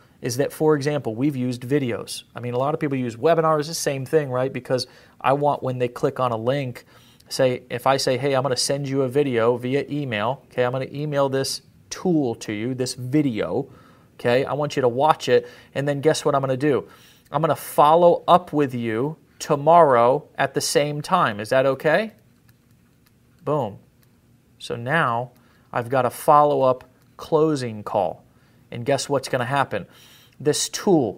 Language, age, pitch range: English, 30-49, 125-155 Hz